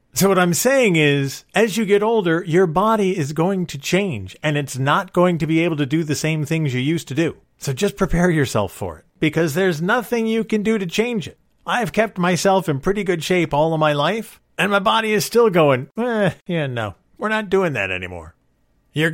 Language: English